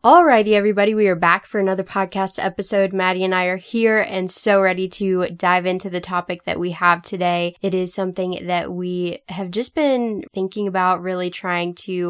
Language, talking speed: English, 195 wpm